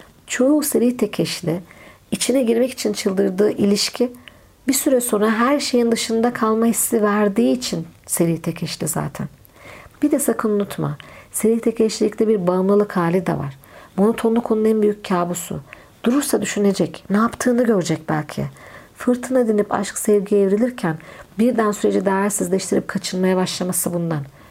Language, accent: Turkish, native